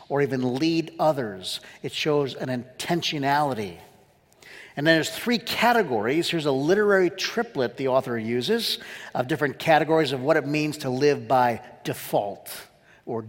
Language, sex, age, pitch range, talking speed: English, male, 50-69, 140-190 Hz, 145 wpm